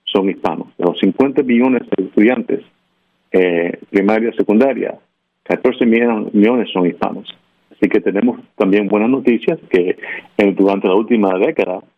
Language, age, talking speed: Spanish, 50-69, 135 wpm